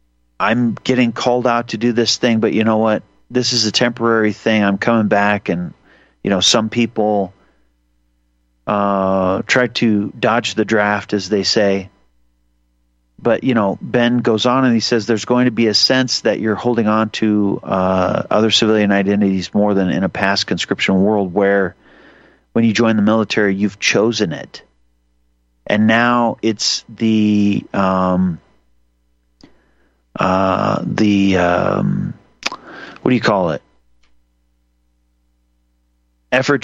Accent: American